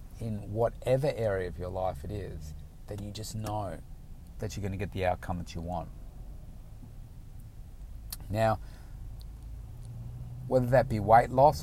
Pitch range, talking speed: 100-130 Hz, 145 wpm